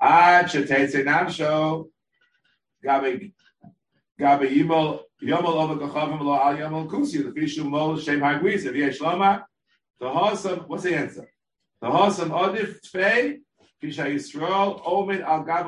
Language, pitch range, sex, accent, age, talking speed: Hebrew, 150-220 Hz, male, American, 50-69, 110 wpm